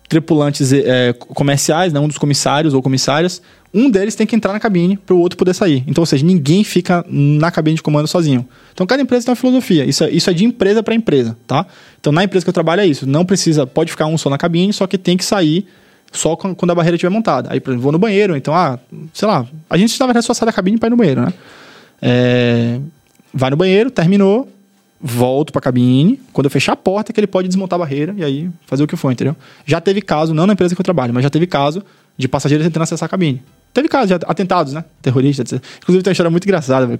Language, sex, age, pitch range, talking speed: Portuguese, male, 20-39, 140-195 Hz, 255 wpm